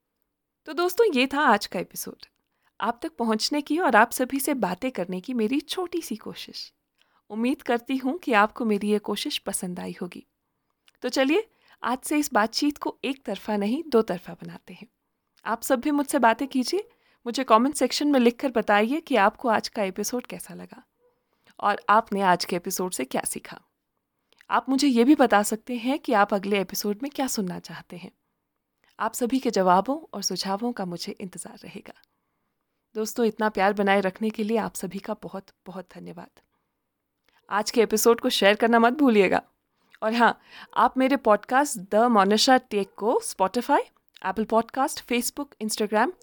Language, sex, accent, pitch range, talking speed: Hindi, female, native, 205-270 Hz, 180 wpm